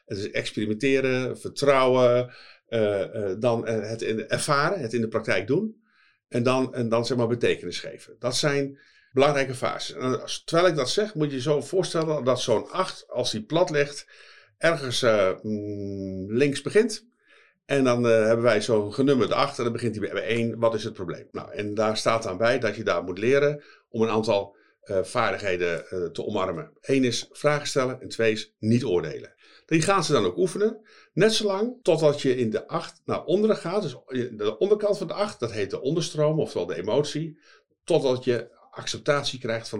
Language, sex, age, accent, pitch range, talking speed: Dutch, male, 50-69, Dutch, 115-160 Hz, 195 wpm